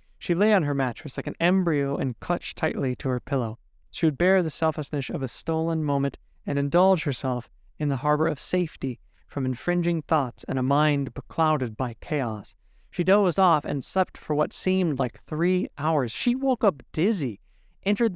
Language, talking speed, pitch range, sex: English, 185 wpm, 130-160 Hz, male